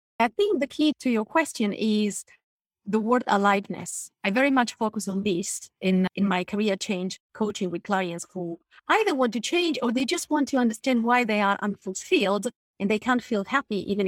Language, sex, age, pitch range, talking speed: English, female, 30-49, 200-270 Hz, 195 wpm